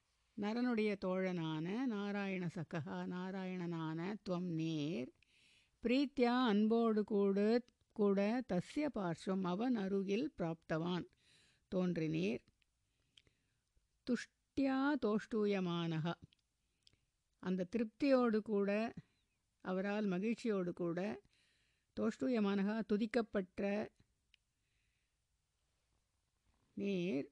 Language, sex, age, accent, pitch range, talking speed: Tamil, female, 60-79, native, 180-225 Hz, 60 wpm